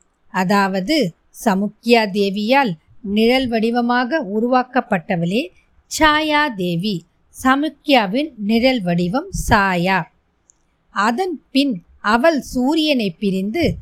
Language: Tamil